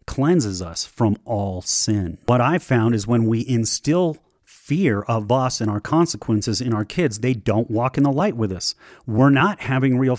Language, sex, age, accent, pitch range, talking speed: English, male, 40-59, American, 110-140 Hz, 195 wpm